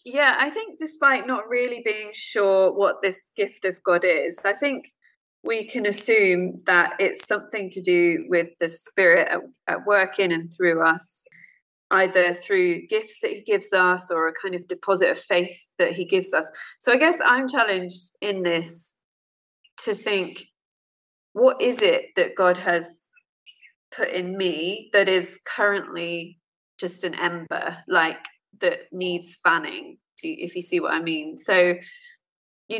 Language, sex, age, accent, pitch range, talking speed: English, female, 20-39, British, 175-215 Hz, 160 wpm